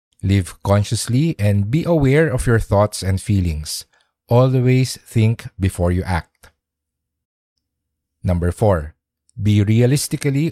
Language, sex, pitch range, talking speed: English, male, 85-115 Hz, 110 wpm